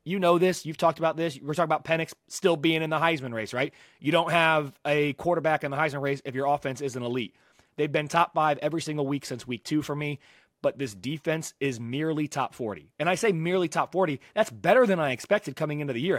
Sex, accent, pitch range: male, American, 140-165 Hz